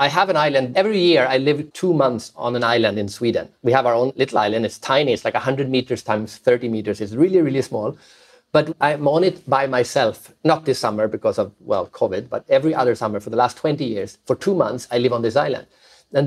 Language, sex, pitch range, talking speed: English, male, 135-180 Hz, 240 wpm